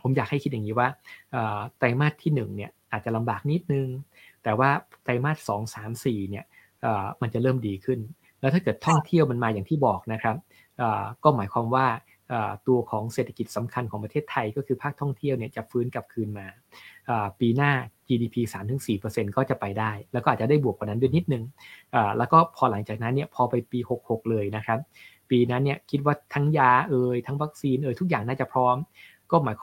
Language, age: Thai, 20-39